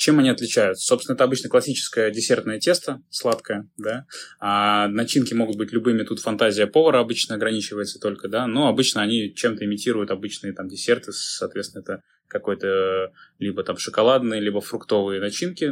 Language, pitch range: Russian, 105-125 Hz